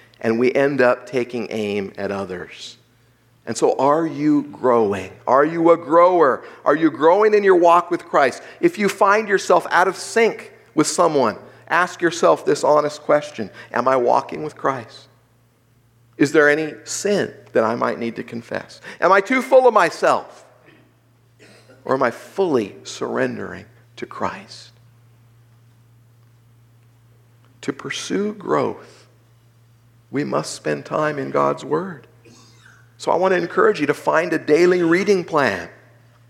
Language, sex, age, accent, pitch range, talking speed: English, male, 50-69, American, 120-185 Hz, 145 wpm